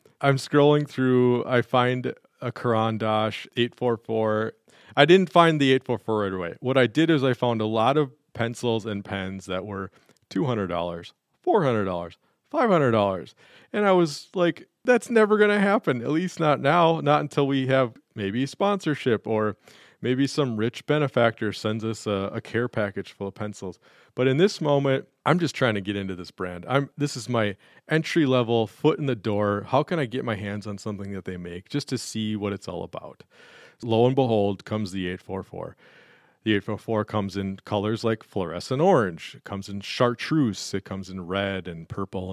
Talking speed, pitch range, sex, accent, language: 185 wpm, 95-130 Hz, male, American, English